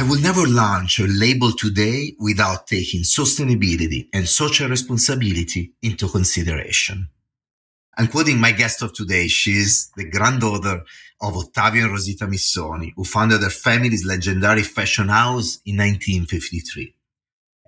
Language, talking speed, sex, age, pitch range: English, 130 wpm, male, 30-49, 95-115 Hz